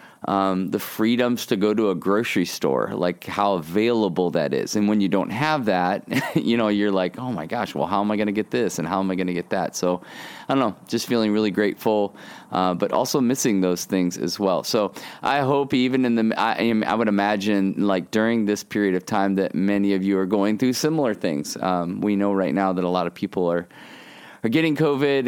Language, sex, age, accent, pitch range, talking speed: English, male, 30-49, American, 95-110 Hz, 235 wpm